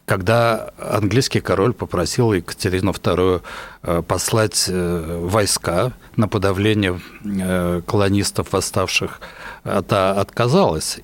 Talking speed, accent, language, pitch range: 75 wpm, native, Russian, 95-120 Hz